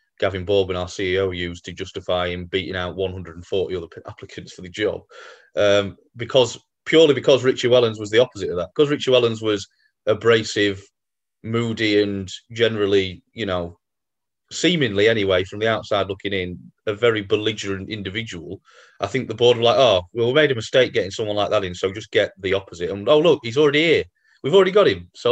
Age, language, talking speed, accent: 30-49, English, 190 wpm, British